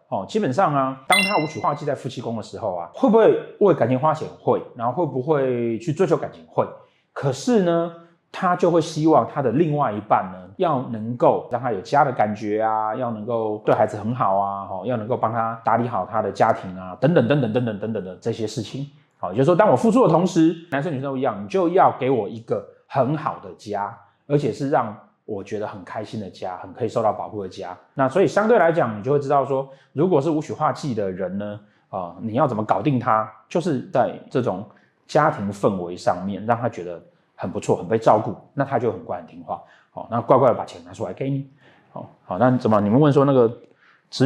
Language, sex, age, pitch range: Chinese, male, 30-49, 110-155 Hz